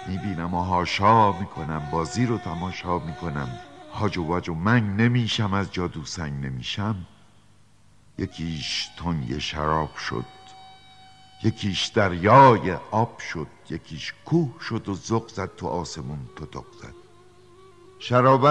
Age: 60-79